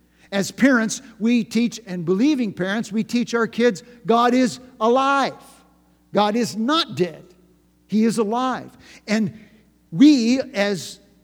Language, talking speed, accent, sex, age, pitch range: English, 130 wpm, American, male, 50-69, 165-235 Hz